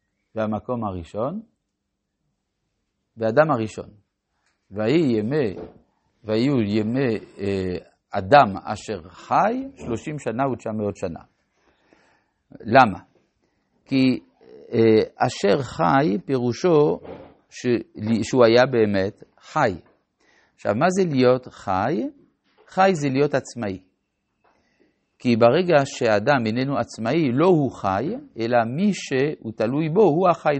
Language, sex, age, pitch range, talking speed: Hebrew, male, 50-69, 105-155 Hz, 100 wpm